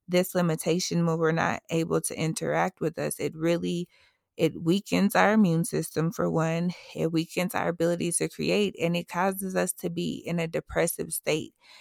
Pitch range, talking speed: 160-180 Hz, 180 wpm